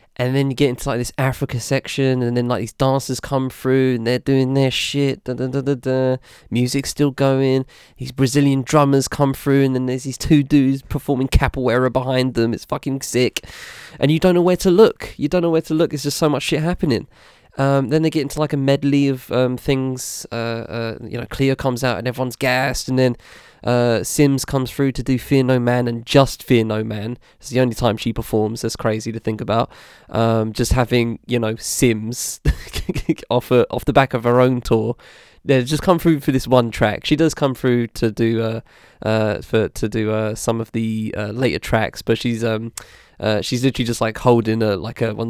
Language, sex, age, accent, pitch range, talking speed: English, male, 20-39, British, 115-140 Hz, 220 wpm